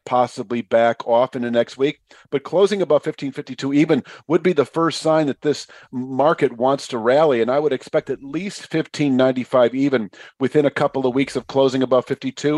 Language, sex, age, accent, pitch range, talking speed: English, male, 50-69, American, 130-150 Hz, 190 wpm